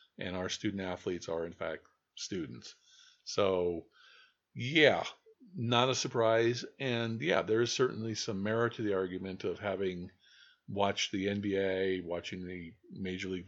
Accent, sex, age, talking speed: American, male, 50-69, 140 wpm